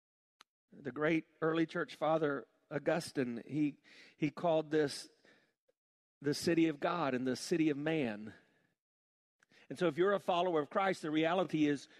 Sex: male